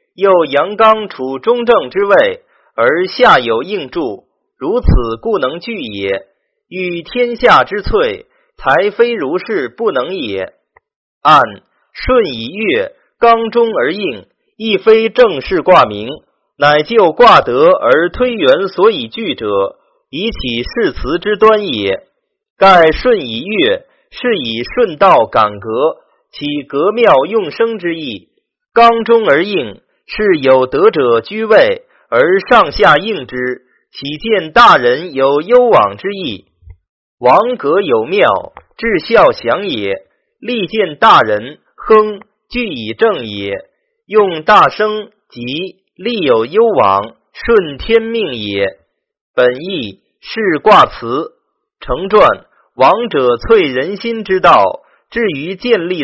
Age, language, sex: 30-49, Chinese, male